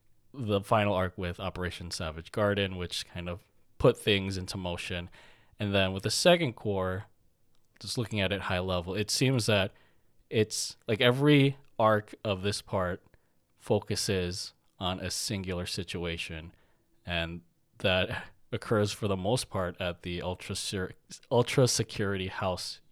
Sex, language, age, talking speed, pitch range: male, English, 20-39, 140 wpm, 90-105 Hz